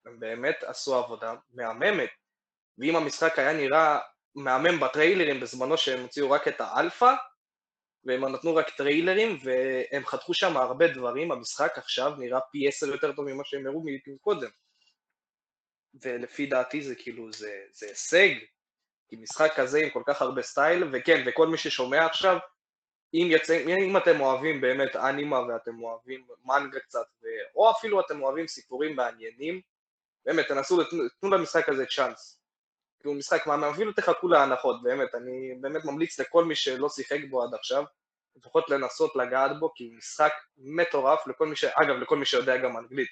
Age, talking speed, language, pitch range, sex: 20-39, 160 wpm, Hebrew, 130-170 Hz, male